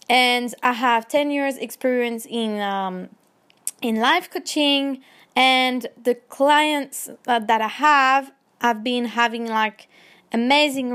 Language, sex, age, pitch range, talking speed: English, female, 20-39, 225-275 Hz, 125 wpm